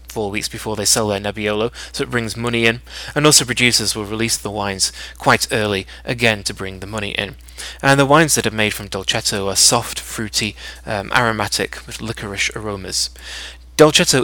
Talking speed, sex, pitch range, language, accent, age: 185 wpm, male, 100-125 Hz, English, British, 20-39